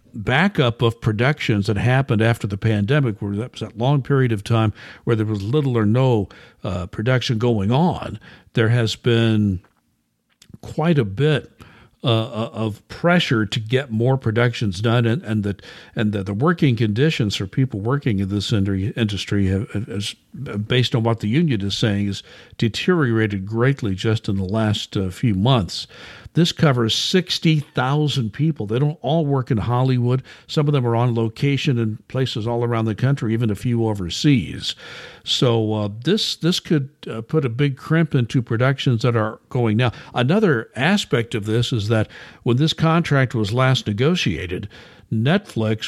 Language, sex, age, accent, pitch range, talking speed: English, male, 60-79, American, 110-140 Hz, 165 wpm